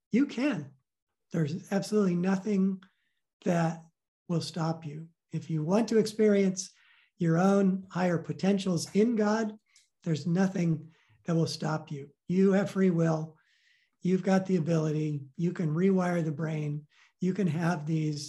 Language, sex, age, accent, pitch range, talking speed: English, male, 50-69, American, 155-185 Hz, 140 wpm